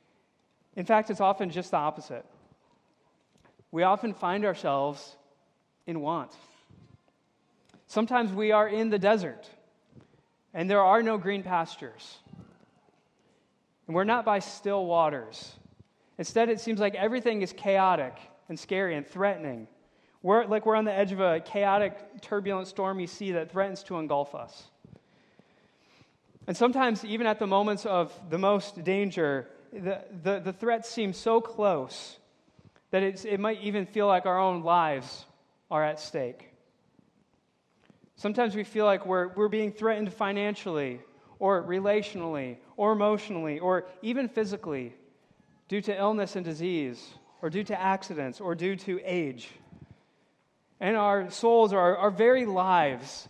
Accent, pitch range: American, 175-210 Hz